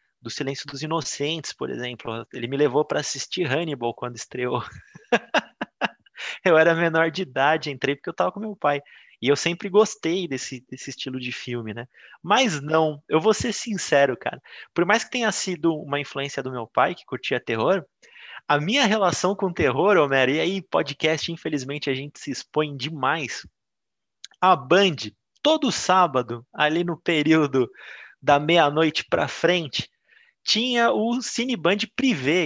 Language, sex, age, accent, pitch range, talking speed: Portuguese, male, 20-39, Brazilian, 145-190 Hz, 160 wpm